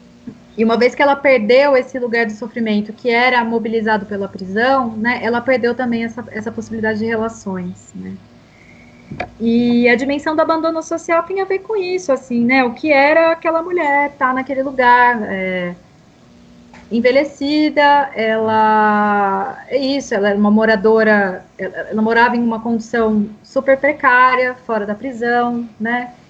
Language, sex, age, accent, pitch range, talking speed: Portuguese, female, 20-39, Brazilian, 220-275 Hz, 155 wpm